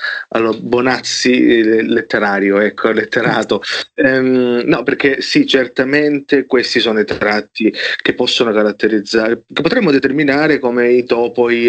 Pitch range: 110-140 Hz